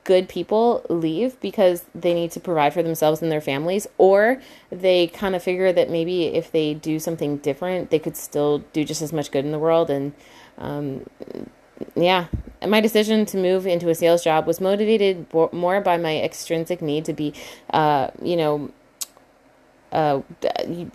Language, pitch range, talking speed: English, 155-185 Hz, 170 wpm